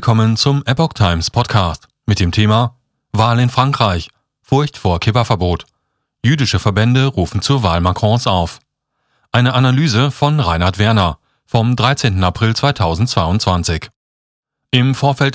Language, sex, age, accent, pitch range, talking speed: German, male, 40-59, German, 100-130 Hz, 130 wpm